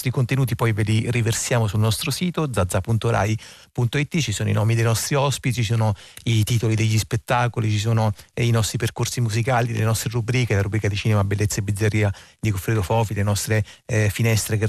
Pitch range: 105-125 Hz